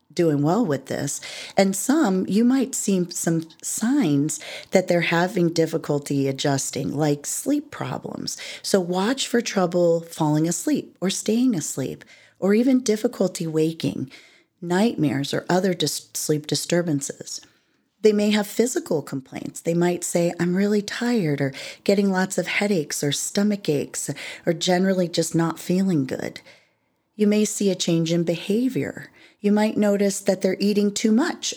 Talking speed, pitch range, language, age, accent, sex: 145 wpm, 160-205 Hz, English, 40-59, American, female